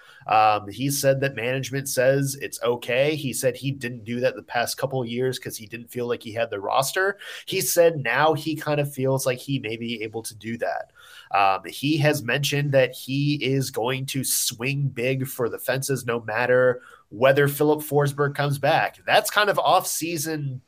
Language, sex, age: English, male, 20-39